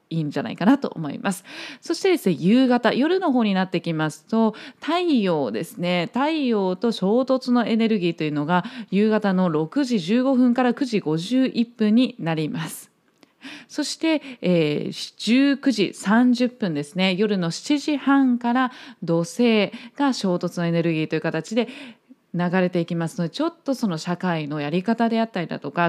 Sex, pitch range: female, 180-260 Hz